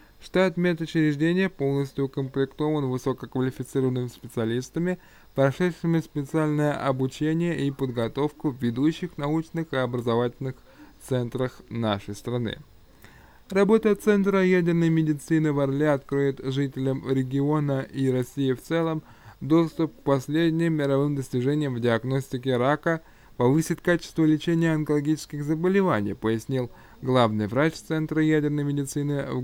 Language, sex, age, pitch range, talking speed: Russian, male, 20-39, 130-160 Hz, 110 wpm